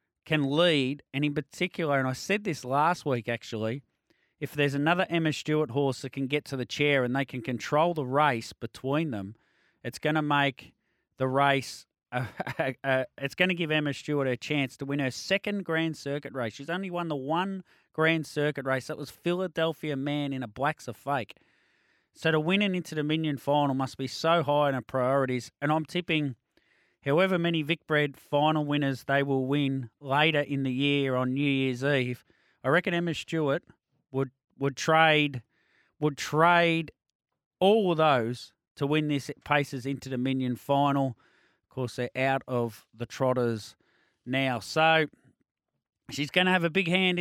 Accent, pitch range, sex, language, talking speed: Australian, 125-160 Hz, male, English, 175 wpm